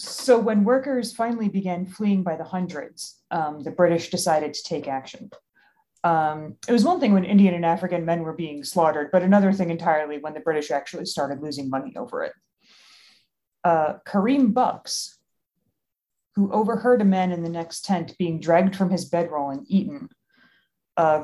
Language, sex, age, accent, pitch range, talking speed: English, female, 30-49, American, 160-195 Hz, 170 wpm